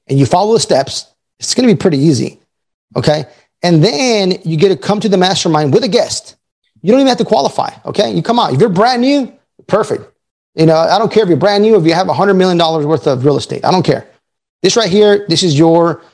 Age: 30-49